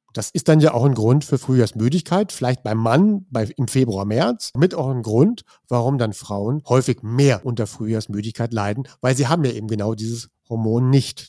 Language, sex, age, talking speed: German, male, 50-69, 190 wpm